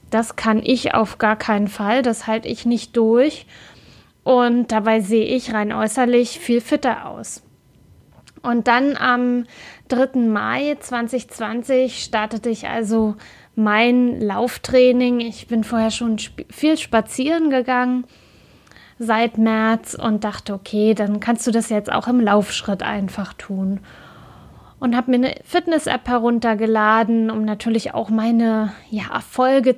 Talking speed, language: 130 wpm, German